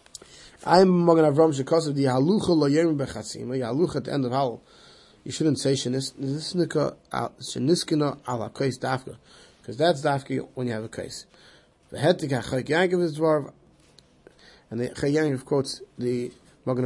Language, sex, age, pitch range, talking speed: English, male, 20-39, 125-160 Hz, 175 wpm